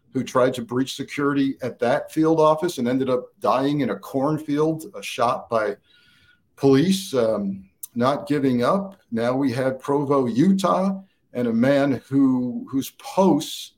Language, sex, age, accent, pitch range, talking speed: English, male, 50-69, American, 120-155 Hz, 155 wpm